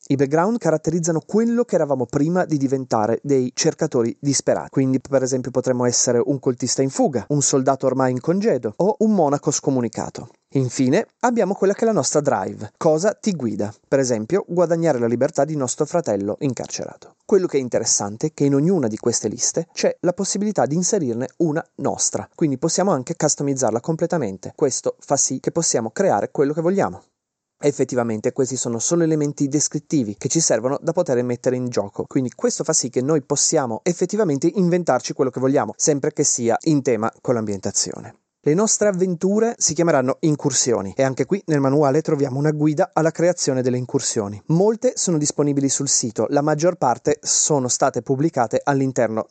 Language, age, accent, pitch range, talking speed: Italian, 30-49, native, 125-165 Hz, 175 wpm